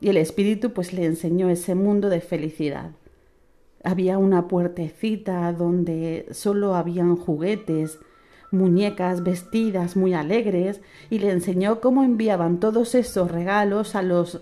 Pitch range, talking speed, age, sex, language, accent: 170-205 Hz, 130 wpm, 40-59, female, Spanish, Spanish